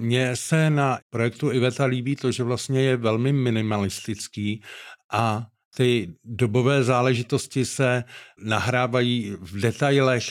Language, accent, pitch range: Czech, native, 115-130 Hz